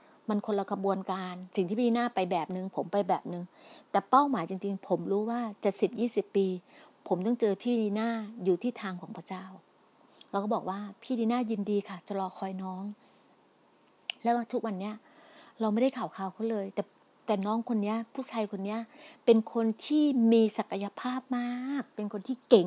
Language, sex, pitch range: Thai, female, 195-245 Hz